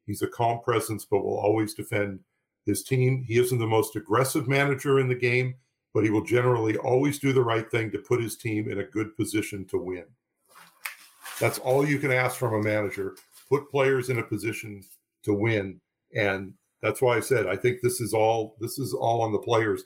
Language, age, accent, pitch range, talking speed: English, 50-69, American, 105-130 Hz, 210 wpm